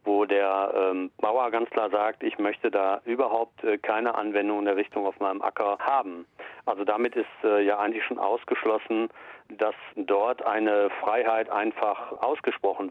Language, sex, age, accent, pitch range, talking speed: German, male, 40-59, German, 100-125 Hz, 165 wpm